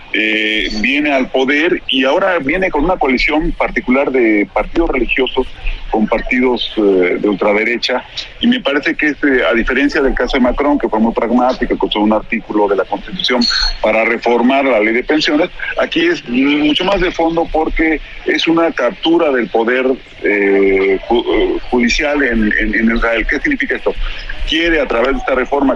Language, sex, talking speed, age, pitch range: Spanish, male, 170 wpm, 50-69, 110-165 Hz